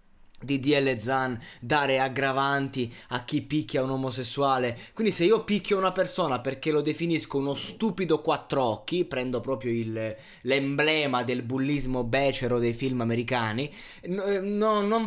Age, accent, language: 20-39, native, Italian